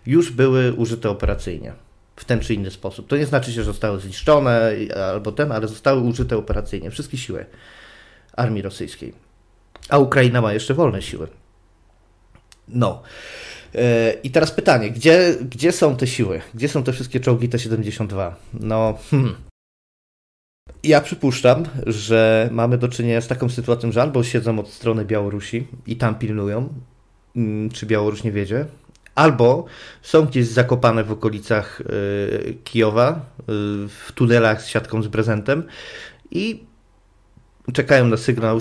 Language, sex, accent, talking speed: Polish, male, native, 140 wpm